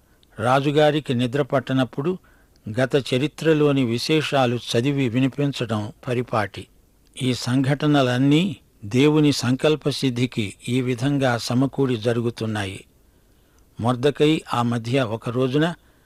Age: 60-79